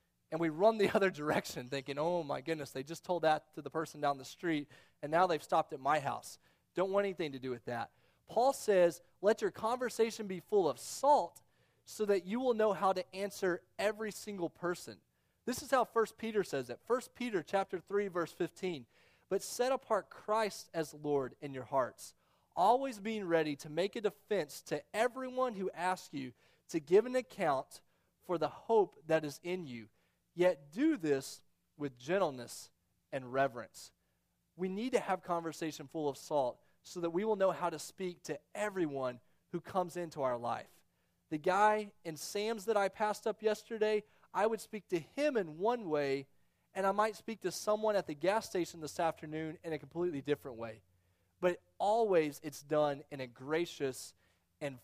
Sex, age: male, 30-49